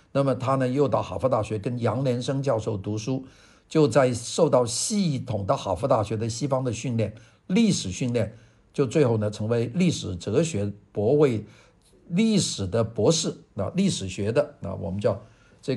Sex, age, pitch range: male, 50-69, 110-155 Hz